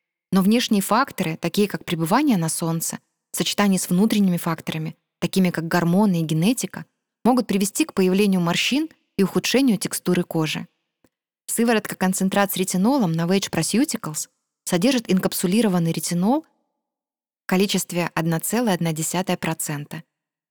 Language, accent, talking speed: Russian, native, 115 wpm